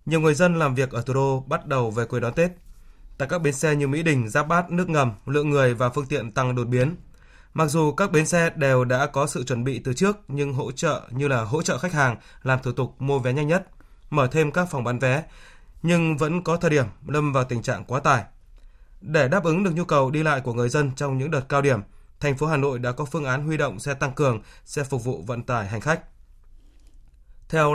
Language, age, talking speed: Vietnamese, 20-39, 250 wpm